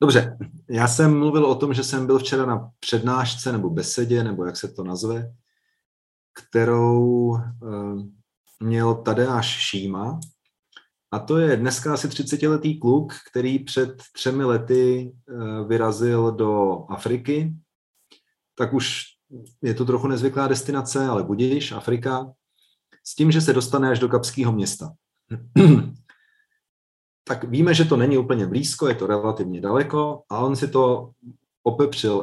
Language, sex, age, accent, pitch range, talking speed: Czech, male, 30-49, native, 105-135 Hz, 140 wpm